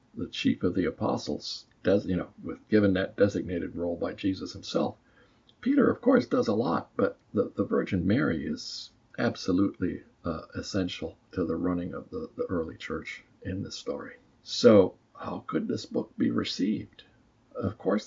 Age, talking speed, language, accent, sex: 50-69, 165 wpm, English, American, male